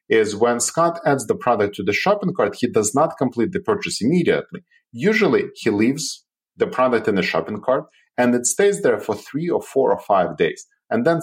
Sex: male